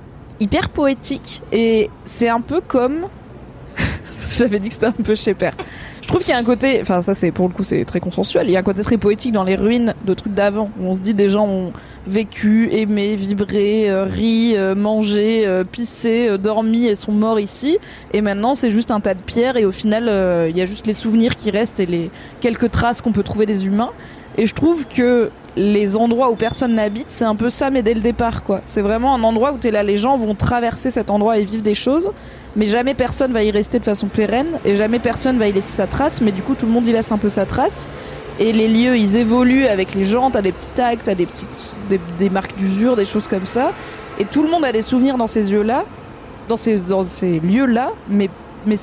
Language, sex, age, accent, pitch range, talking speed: French, female, 20-39, French, 205-240 Hz, 245 wpm